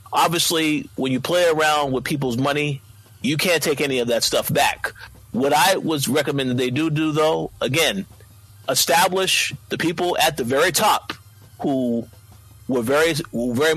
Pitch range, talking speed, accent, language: 120-155 Hz, 155 wpm, American, English